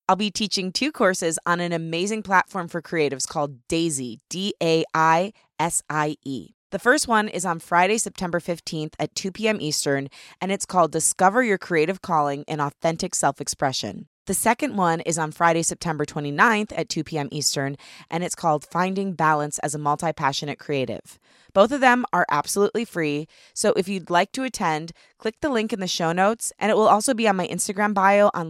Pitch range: 155-200 Hz